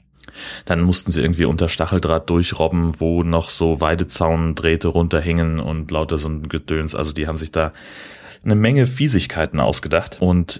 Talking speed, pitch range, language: 155 wpm, 75-85 Hz, German